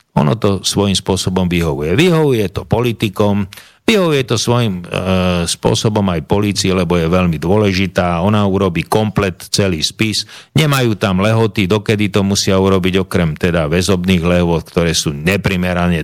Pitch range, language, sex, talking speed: 95-115 Hz, Slovak, male, 140 wpm